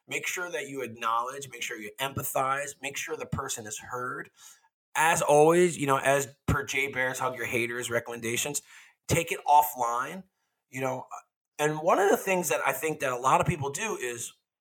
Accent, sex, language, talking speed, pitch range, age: American, male, English, 195 wpm, 120-150 Hz, 30-49